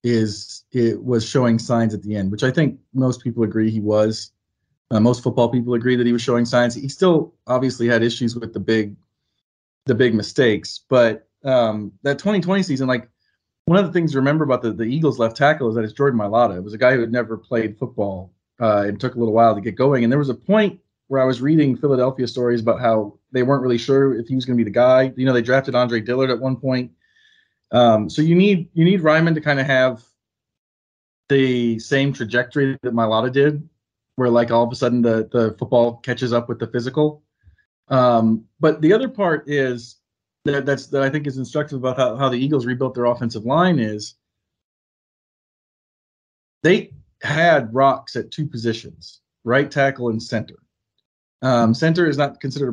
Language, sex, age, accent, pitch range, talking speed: English, male, 30-49, American, 115-140 Hz, 205 wpm